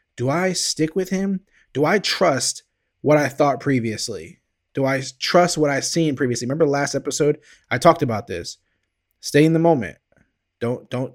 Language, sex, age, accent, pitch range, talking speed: English, male, 20-39, American, 115-155 Hz, 180 wpm